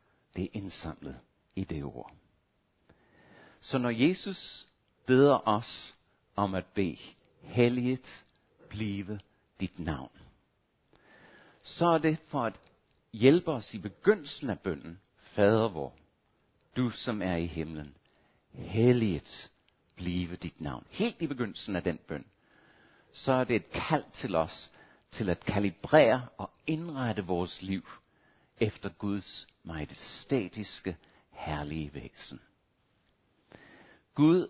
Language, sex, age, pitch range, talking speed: Danish, male, 60-79, 90-130 Hz, 120 wpm